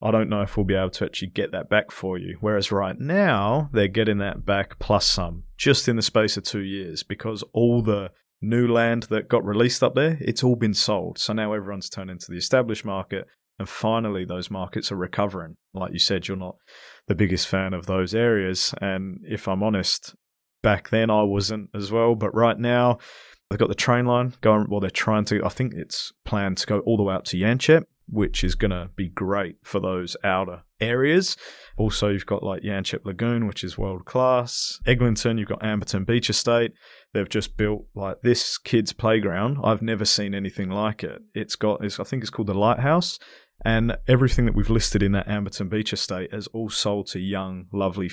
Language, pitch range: English, 95-115 Hz